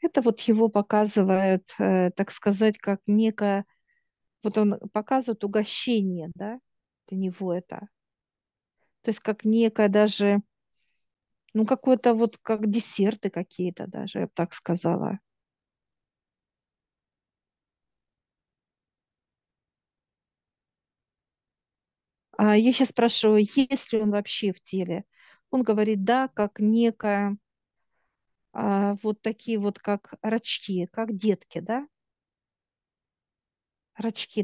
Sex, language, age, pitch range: female, Russian, 40-59, 200-225 Hz